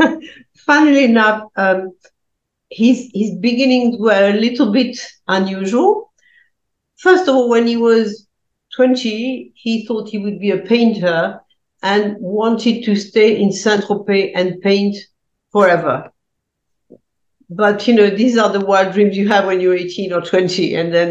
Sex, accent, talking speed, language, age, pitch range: female, French, 145 wpm, English, 60-79, 180-220 Hz